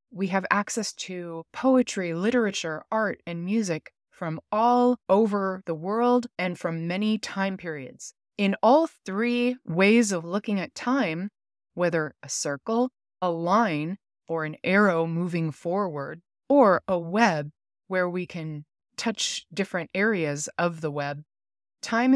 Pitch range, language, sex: 165-215 Hz, English, female